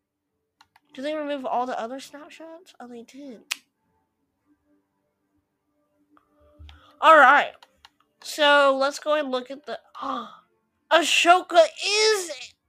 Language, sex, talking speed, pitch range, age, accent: English, female, 100 wpm, 210-310 Hz, 20-39, American